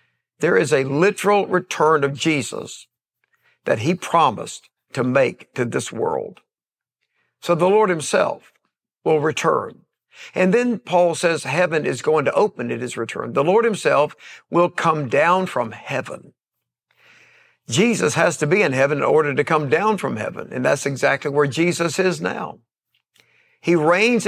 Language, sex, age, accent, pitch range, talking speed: English, male, 60-79, American, 150-185 Hz, 155 wpm